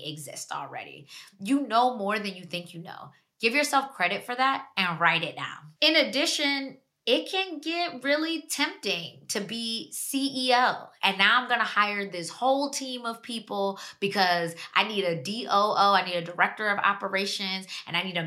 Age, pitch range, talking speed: 20-39, 175-230 Hz, 180 wpm